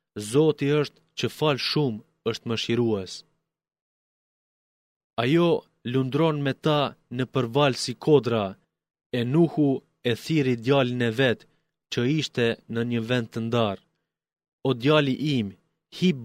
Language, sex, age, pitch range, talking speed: Greek, male, 30-49, 115-145 Hz, 120 wpm